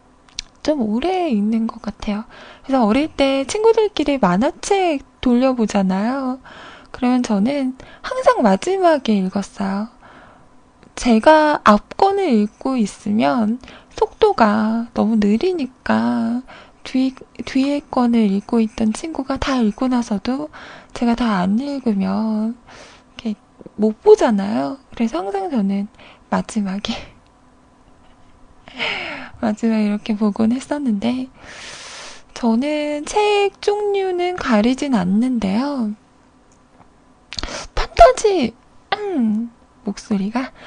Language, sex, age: Korean, female, 20-39